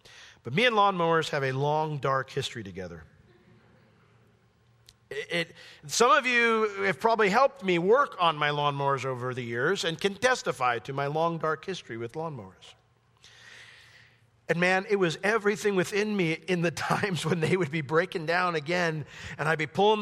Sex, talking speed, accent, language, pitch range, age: male, 165 wpm, American, English, 120-185 Hz, 50-69